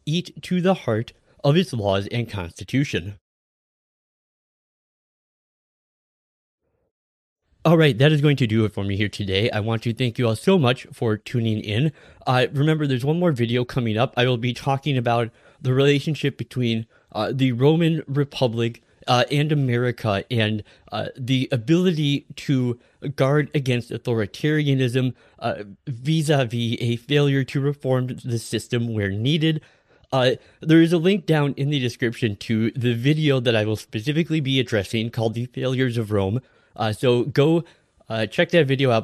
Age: 20-39